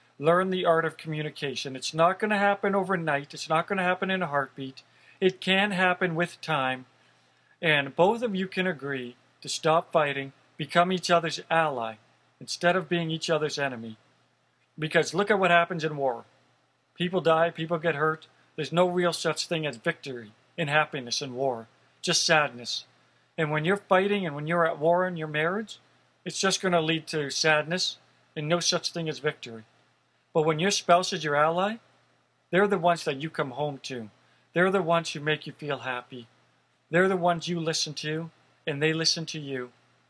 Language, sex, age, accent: Japanese, male, 40-59, American